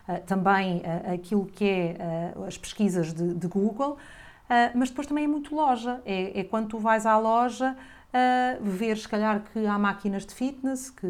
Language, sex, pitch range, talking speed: Portuguese, female, 185-235 Hz, 170 wpm